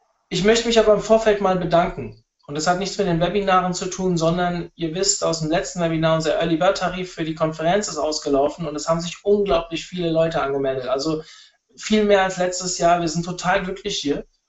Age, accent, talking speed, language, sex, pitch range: 20-39, German, 215 wpm, German, male, 160-195 Hz